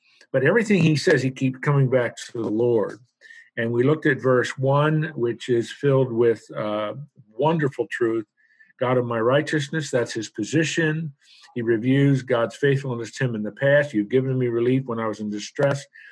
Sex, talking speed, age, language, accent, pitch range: male, 180 wpm, 50-69, English, American, 115-140 Hz